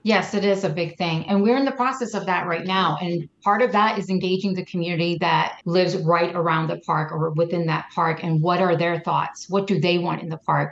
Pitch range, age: 170-200 Hz, 30-49